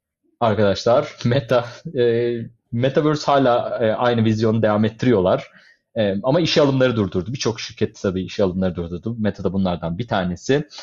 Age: 30-49